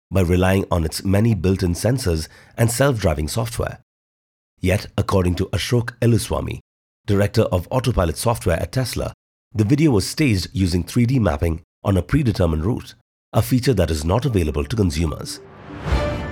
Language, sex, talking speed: English, male, 145 wpm